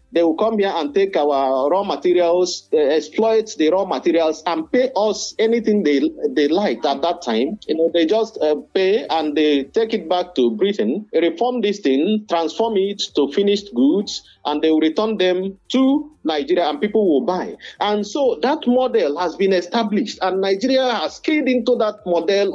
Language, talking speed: English, 185 wpm